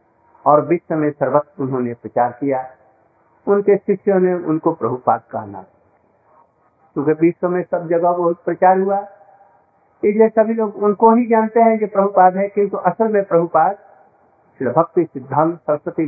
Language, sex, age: Hindi, male, 60-79